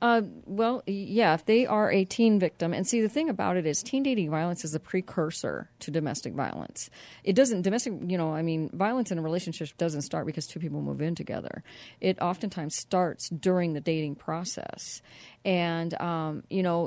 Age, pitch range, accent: 40-59, 165-205 Hz, American